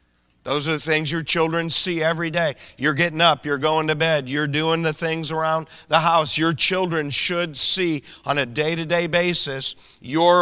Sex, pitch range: male, 135-155 Hz